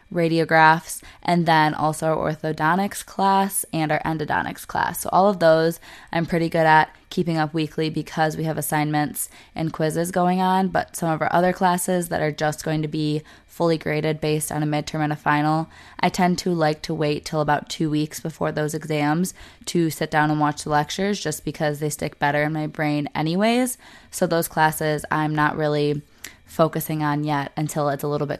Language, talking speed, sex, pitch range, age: English, 200 wpm, female, 155-175 Hz, 20-39